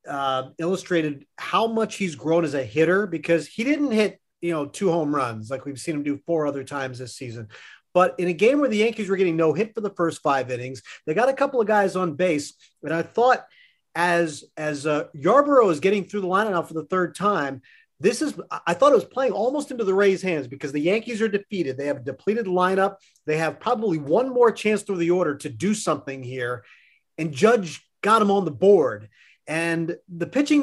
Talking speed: 220 wpm